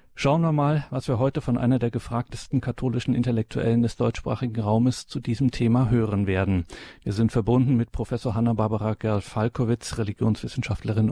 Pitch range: 105-120 Hz